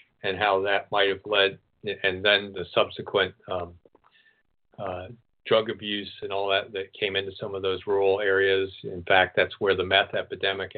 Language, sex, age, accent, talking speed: English, male, 50-69, American, 180 wpm